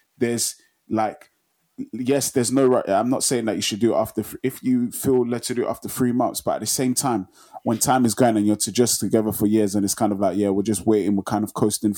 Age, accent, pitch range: 20-39, British, 100-115 Hz